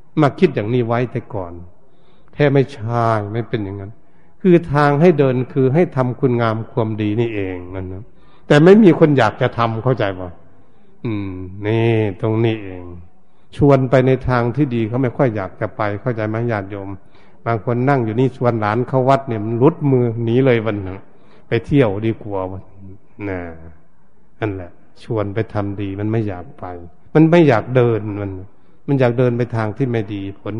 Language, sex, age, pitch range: Thai, male, 60-79, 100-130 Hz